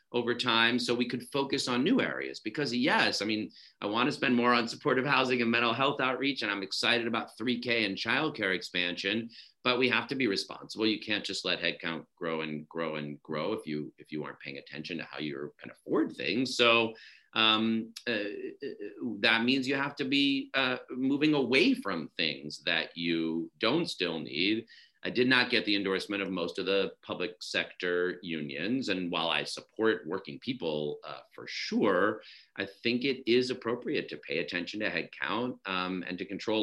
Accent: American